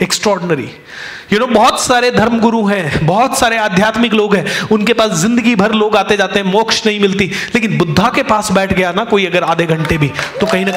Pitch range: 165-225 Hz